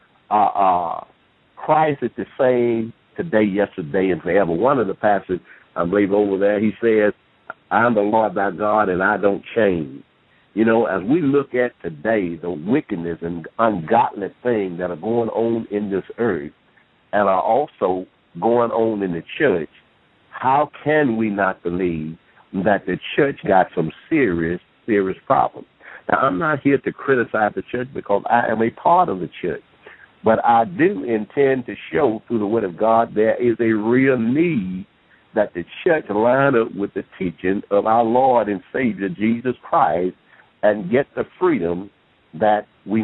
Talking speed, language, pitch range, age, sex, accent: 170 wpm, English, 95-115 Hz, 60-79, male, American